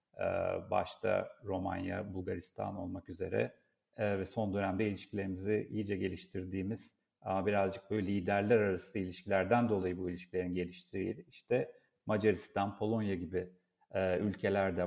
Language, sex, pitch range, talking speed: Turkish, male, 100-140 Hz, 100 wpm